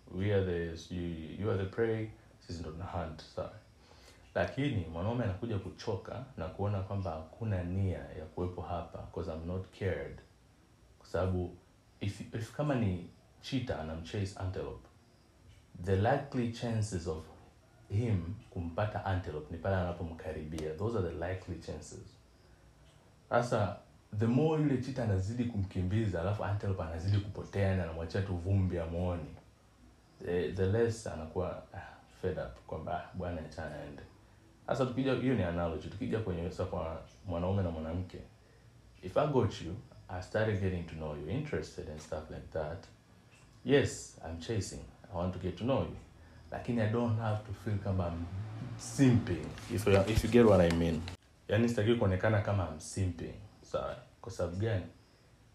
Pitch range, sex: 85-110 Hz, male